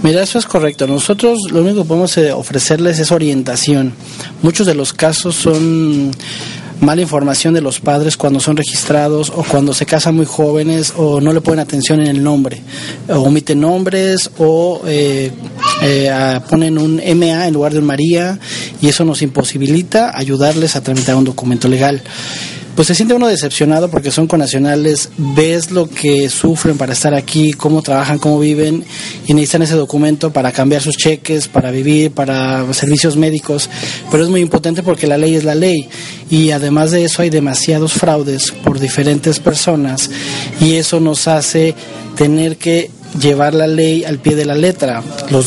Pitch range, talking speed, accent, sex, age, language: 140-165 Hz, 175 wpm, Mexican, male, 30-49, Spanish